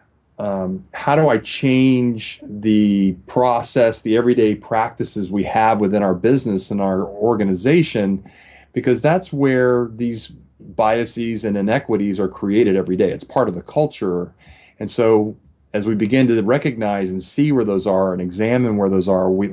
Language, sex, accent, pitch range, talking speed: English, male, American, 95-120 Hz, 160 wpm